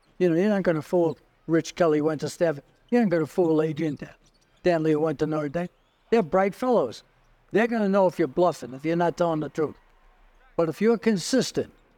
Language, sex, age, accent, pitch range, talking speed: English, male, 60-79, American, 160-205 Hz, 220 wpm